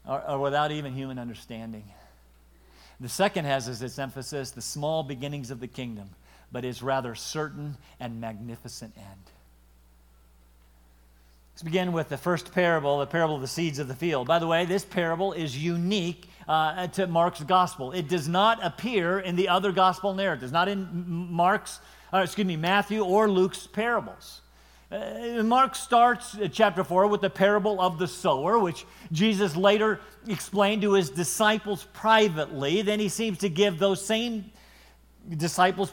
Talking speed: 165 wpm